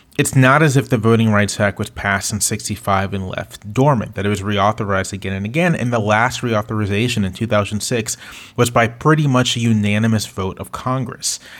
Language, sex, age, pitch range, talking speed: English, male, 30-49, 100-125 Hz, 190 wpm